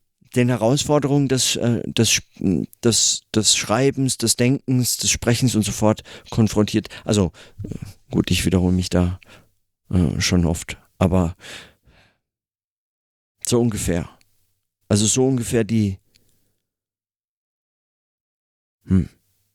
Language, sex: German, male